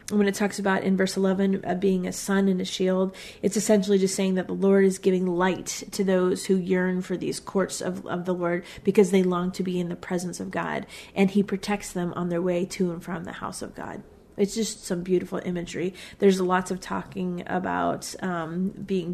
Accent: American